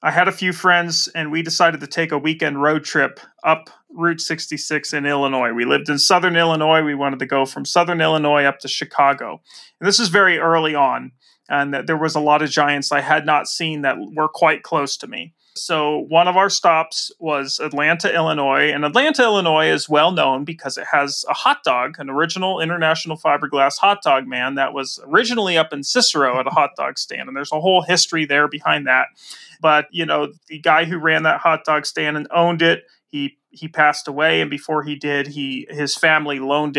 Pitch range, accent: 145-170 Hz, American